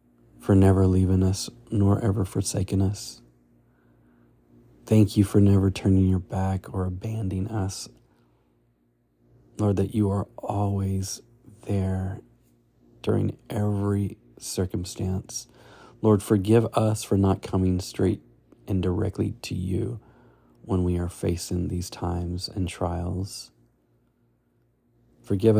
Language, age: English, 40-59